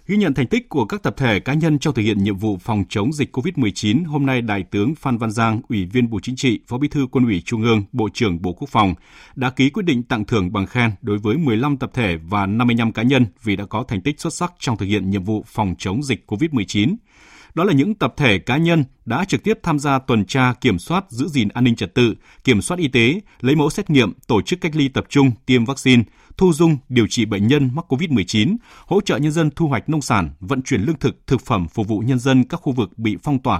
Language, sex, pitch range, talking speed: Vietnamese, male, 105-145 Hz, 260 wpm